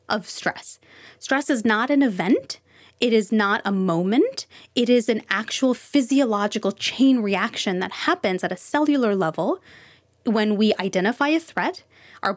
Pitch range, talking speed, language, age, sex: 195-260 Hz, 150 wpm, English, 20-39, female